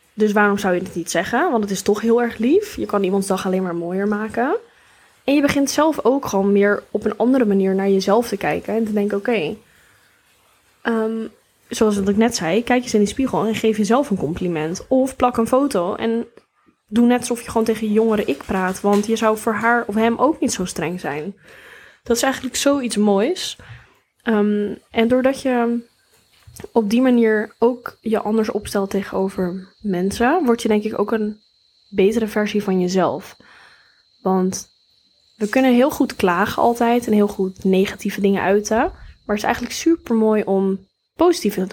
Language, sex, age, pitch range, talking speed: Dutch, female, 10-29, 195-235 Hz, 190 wpm